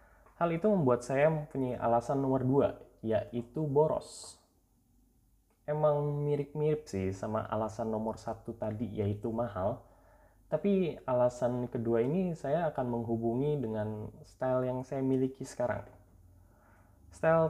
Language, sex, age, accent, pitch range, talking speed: Indonesian, male, 20-39, native, 100-135 Hz, 115 wpm